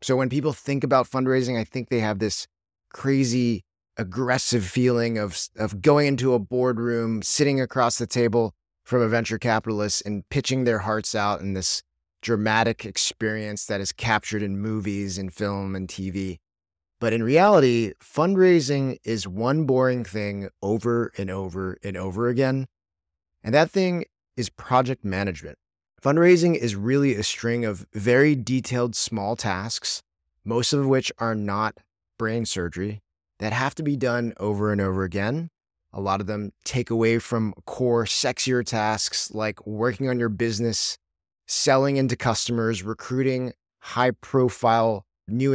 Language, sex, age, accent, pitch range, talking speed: English, male, 30-49, American, 100-130 Hz, 150 wpm